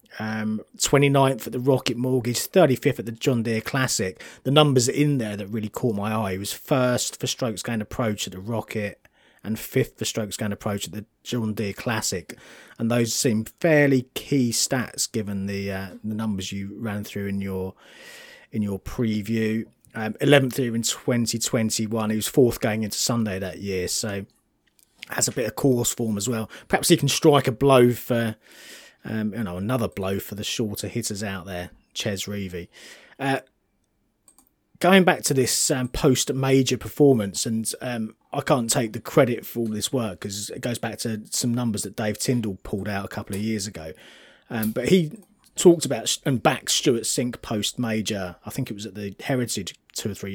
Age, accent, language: 30-49, British, English